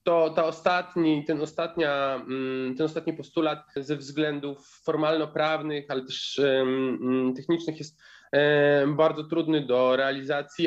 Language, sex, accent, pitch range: Polish, male, native, 130-175 Hz